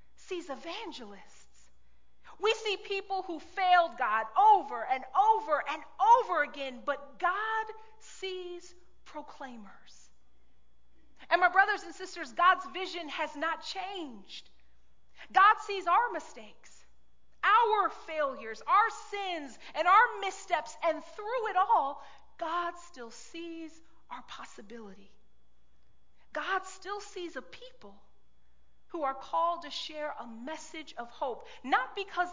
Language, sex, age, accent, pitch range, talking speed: English, female, 40-59, American, 245-375 Hz, 115 wpm